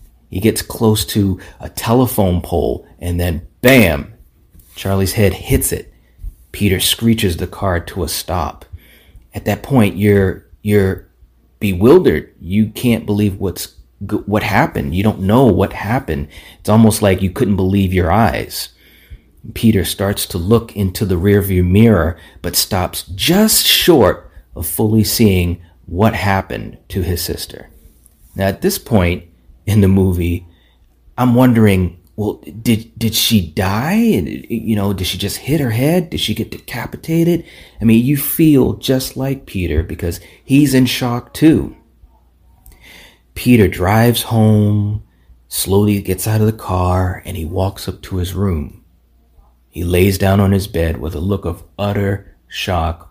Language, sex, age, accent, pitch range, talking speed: English, male, 30-49, American, 85-110 Hz, 150 wpm